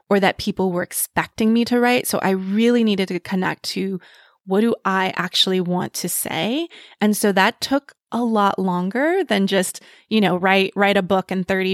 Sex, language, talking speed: female, English, 200 wpm